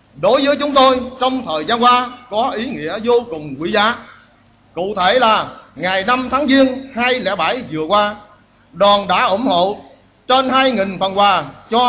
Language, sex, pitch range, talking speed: Vietnamese, male, 170-255 Hz, 170 wpm